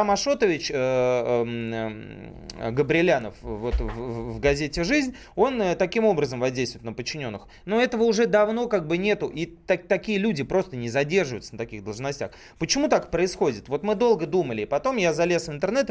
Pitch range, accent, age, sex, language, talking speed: 130-200 Hz, native, 30-49, male, Russian, 175 wpm